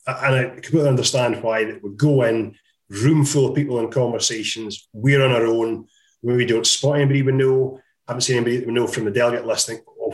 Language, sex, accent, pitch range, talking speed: English, male, British, 115-140 Hz, 205 wpm